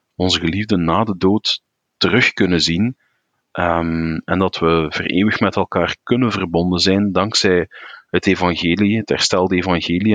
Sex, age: male, 30-49